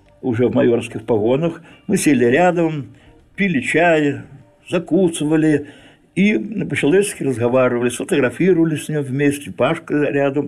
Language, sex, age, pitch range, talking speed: Russian, male, 60-79, 115-150 Hz, 110 wpm